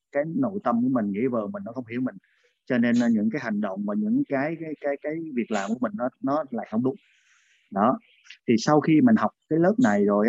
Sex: male